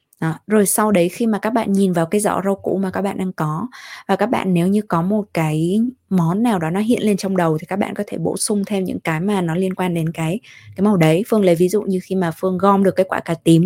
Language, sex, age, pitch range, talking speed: Vietnamese, female, 20-39, 175-225 Hz, 300 wpm